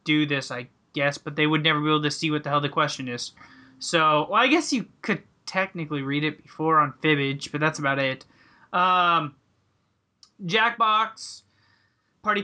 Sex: male